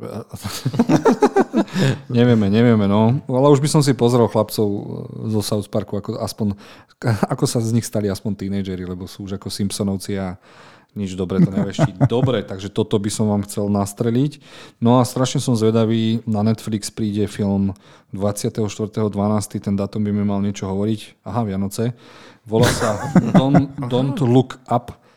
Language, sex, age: Slovak, male, 40-59